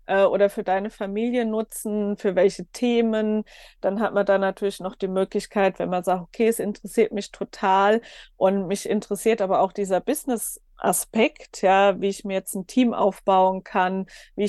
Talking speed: 170 wpm